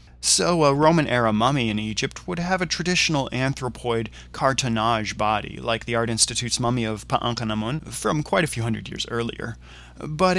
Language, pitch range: English, 110-155 Hz